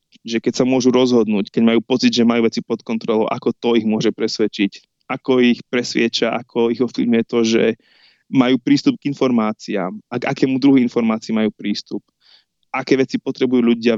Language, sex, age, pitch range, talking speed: Slovak, male, 20-39, 115-140 Hz, 175 wpm